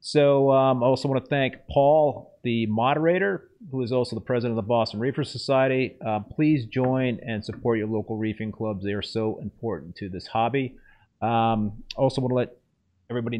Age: 30-49